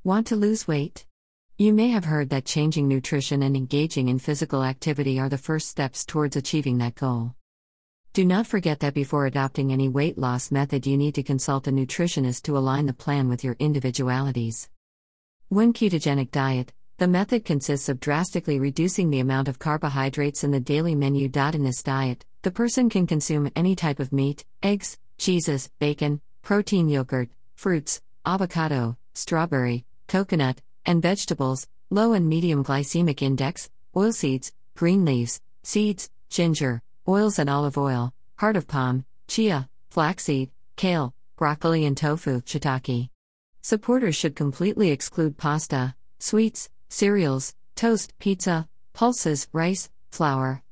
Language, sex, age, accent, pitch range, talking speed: English, female, 50-69, American, 135-175 Hz, 145 wpm